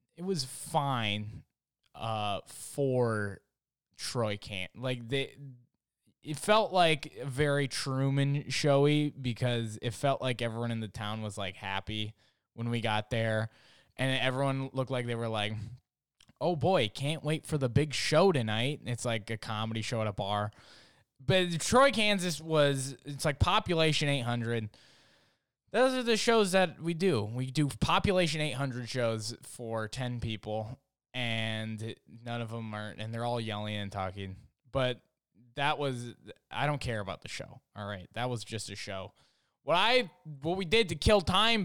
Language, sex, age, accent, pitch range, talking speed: English, male, 20-39, American, 110-150 Hz, 165 wpm